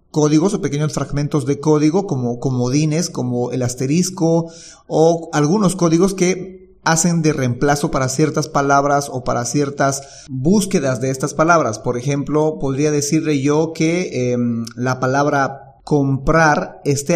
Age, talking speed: 30-49, 140 wpm